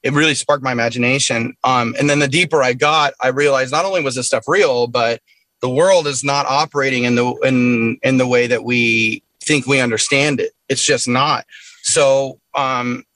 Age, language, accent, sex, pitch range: 30-49, Korean, American, male, 115-140 Hz